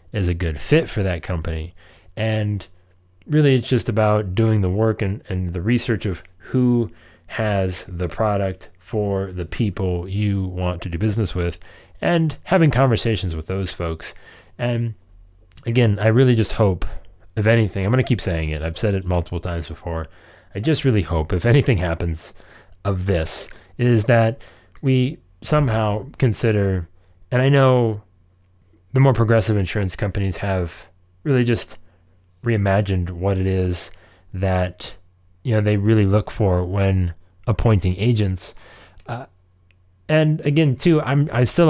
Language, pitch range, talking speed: English, 90-115 Hz, 150 wpm